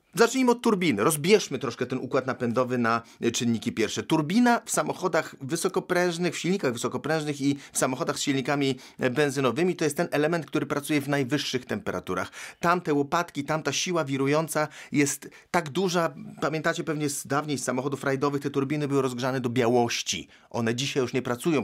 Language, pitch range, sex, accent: English, 130-160 Hz, male, Polish